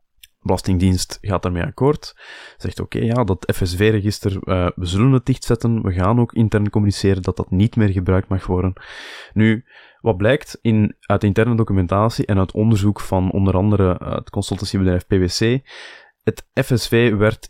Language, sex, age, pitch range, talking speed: Dutch, male, 20-39, 95-110 Hz, 160 wpm